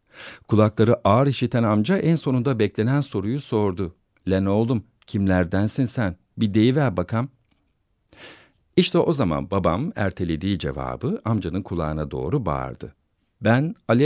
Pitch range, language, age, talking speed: 100-140 Hz, Turkish, 50-69, 125 wpm